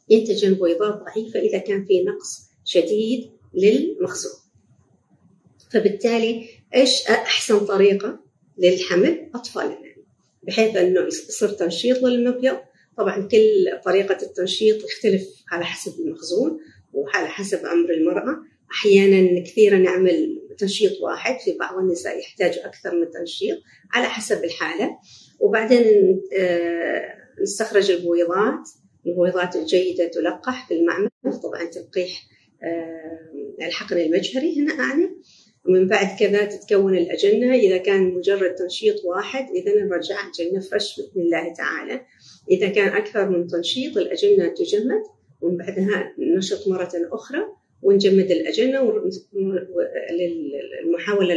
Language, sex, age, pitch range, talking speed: Arabic, female, 50-69, 180-275 Hz, 110 wpm